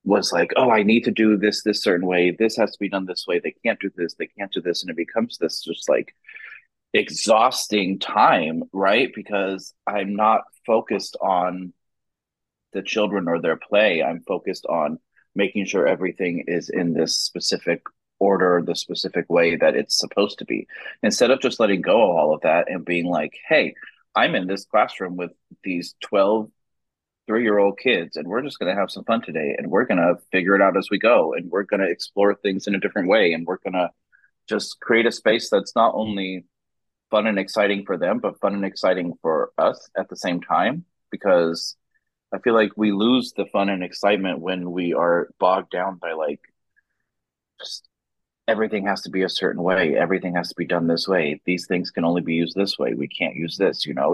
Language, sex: English, male